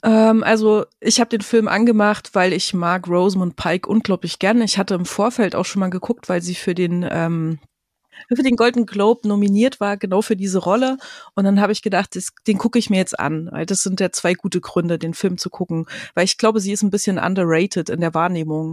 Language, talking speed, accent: German, 225 wpm, German